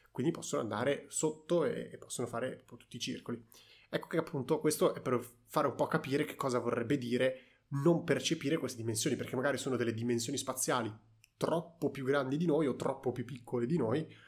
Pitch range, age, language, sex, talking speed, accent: 115-140 Hz, 30-49, Italian, male, 190 wpm, native